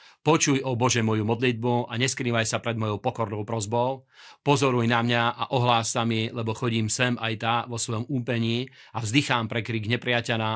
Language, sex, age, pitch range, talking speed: Slovak, male, 40-59, 115-130 Hz, 180 wpm